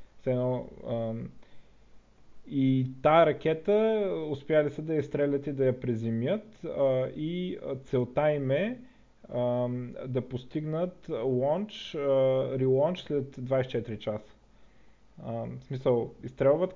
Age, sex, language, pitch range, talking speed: 30-49, male, Bulgarian, 120-145 Hz, 105 wpm